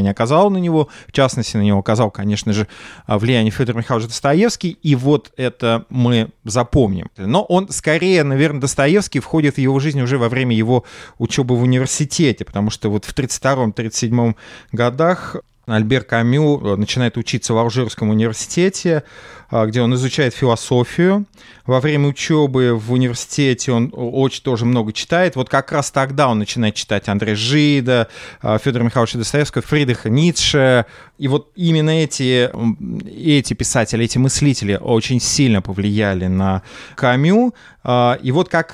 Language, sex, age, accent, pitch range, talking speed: Russian, male, 30-49, native, 115-140 Hz, 145 wpm